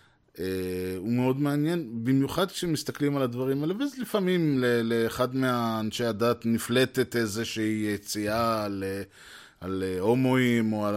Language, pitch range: Hebrew, 105-130 Hz